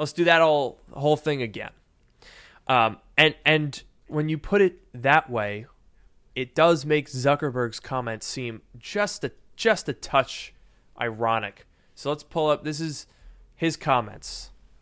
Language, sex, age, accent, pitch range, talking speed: English, male, 20-39, American, 125-165 Hz, 145 wpm